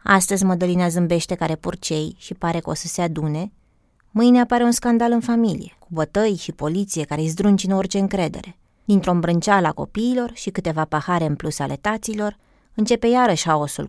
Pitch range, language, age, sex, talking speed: 155-200 Hz, Romanian, 20-39, female, 180 wpm